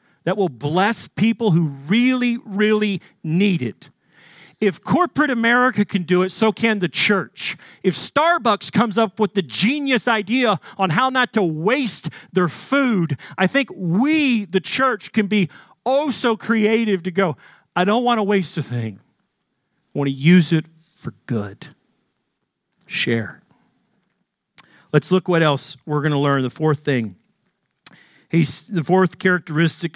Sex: male